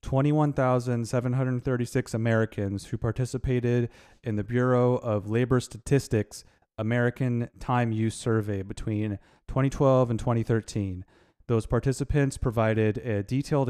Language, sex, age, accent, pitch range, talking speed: English, male, 30-49, American, 105-125 Hz, 100 wpm